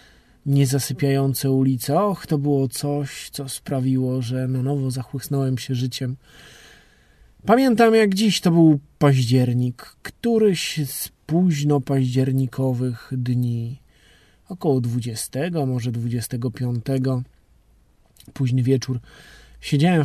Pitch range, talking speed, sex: 125-155 Hz, 95 wpm, male